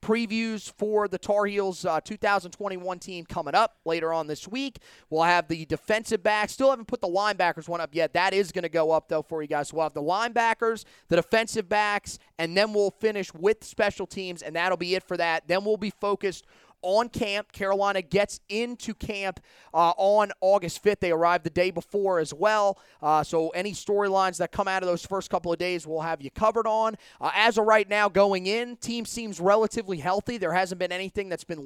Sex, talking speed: male, 215 wpm